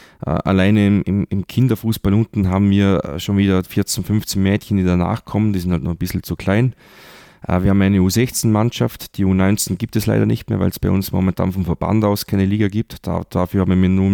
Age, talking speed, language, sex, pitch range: 30-49, 210 wpm, German, male, 90-105 Hz